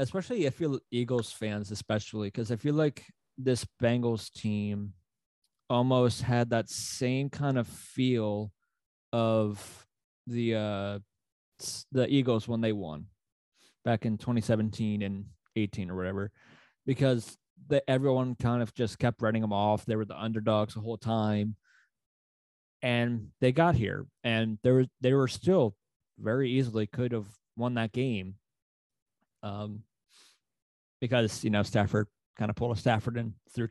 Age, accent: 20-39, American